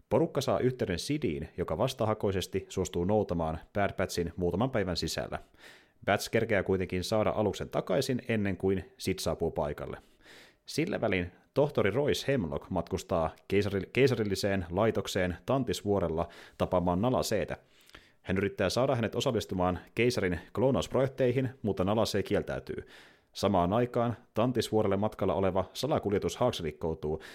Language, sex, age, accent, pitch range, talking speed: Finnish, male, 30-49, native, 90-110 Hz, 115 wpm